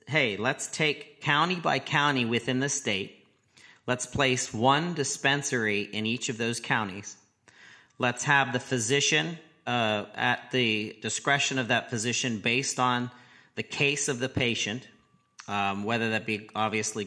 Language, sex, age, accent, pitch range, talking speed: English, male, 40-59, American, 110-140 Hz, 145 wpm